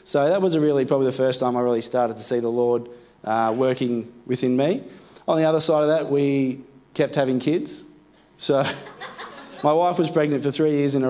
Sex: male